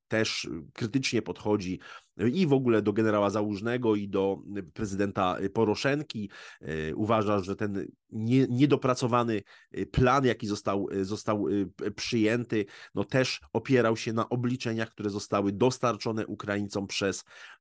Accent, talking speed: native, 110 wpm